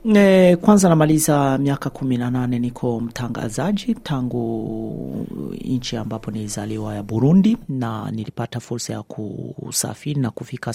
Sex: male